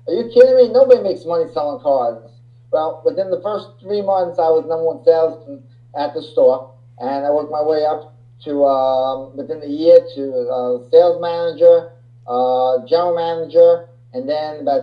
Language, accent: English, American